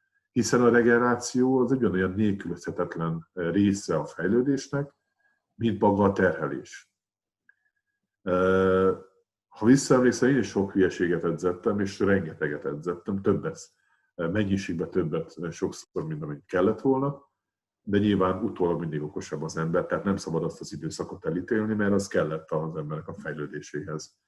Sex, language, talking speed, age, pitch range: male, Hungarian, 130 wpm, 50-69, 85-120 Hz